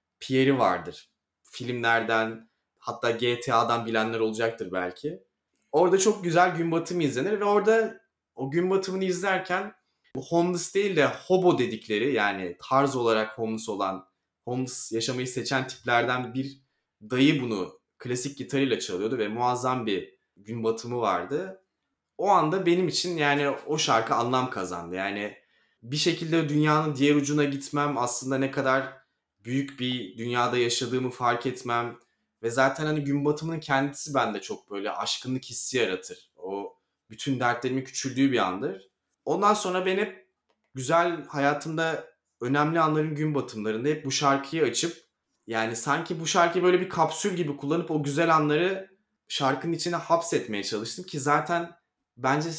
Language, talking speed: Turkish, 140 wpm